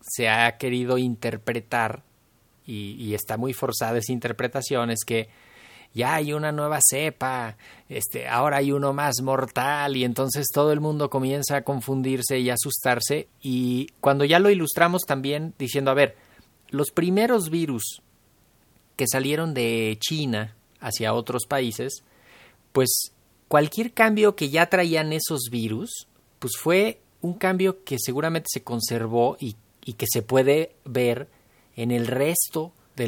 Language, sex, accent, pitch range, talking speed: Spanish, male, Mexican, 120-145 Hz, 145 wpm